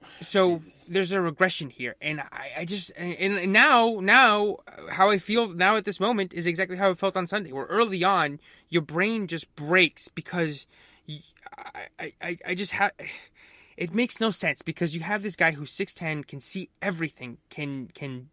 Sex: male